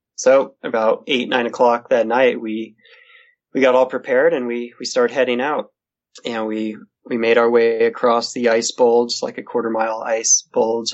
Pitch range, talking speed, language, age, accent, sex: 110-120 Hz, 185 wpm, English, 20-39, American, male